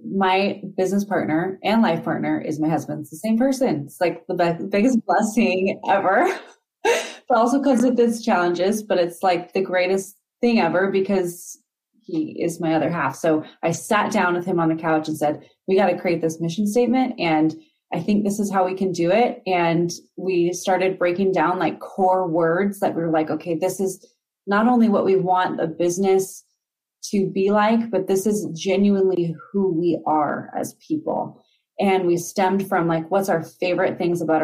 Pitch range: 165-195 Hz